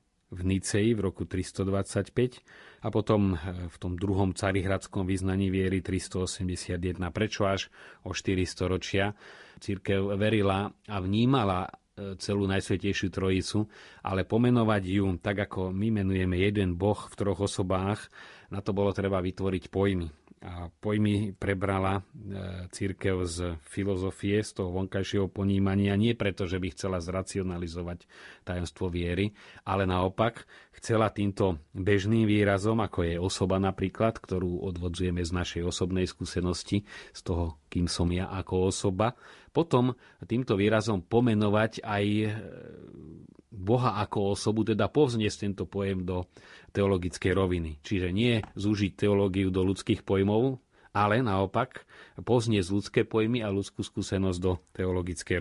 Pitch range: 95-105 Hz